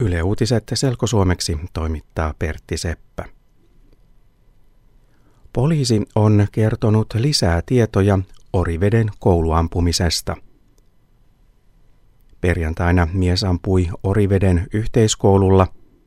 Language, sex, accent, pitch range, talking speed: Finnish, male, native, 85-110 Hz, 65 wpm